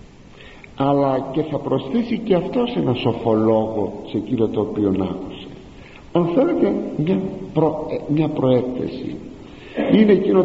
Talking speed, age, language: 125 wpm, 50-69, Greek